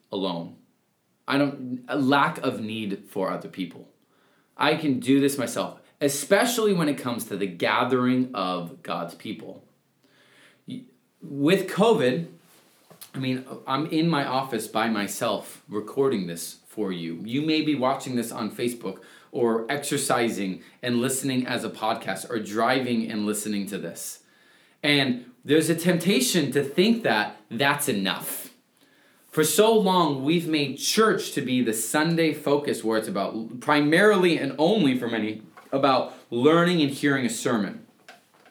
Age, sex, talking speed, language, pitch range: 30-49, male, 145 wpm, English, 120-175 Hz